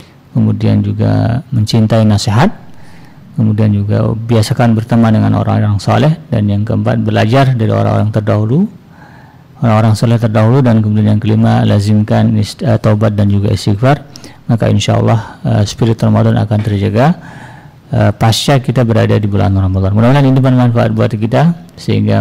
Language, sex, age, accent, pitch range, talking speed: Indonesian, male, 50-69, native, 110-130 Hz, 140 wpm